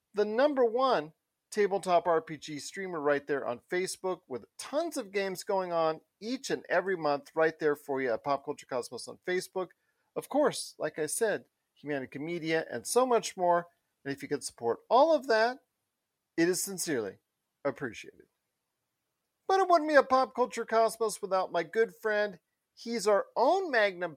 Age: 40-59